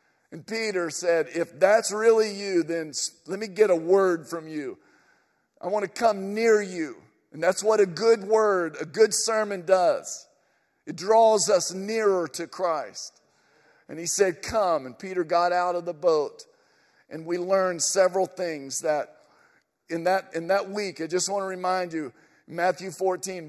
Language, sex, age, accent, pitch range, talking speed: English, male, 50-69, American, 165-205 Hz, 170 wpm